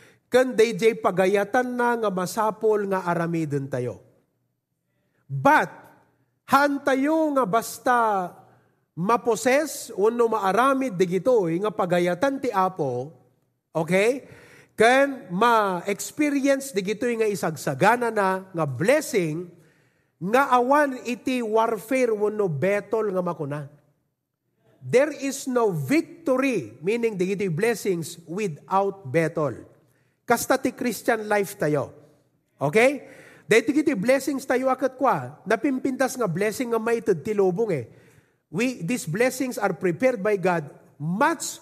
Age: 30-49